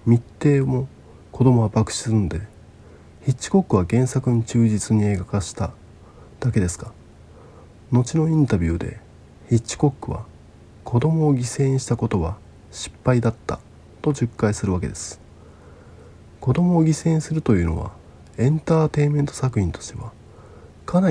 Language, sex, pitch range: Japanese, male, 90-125 Hz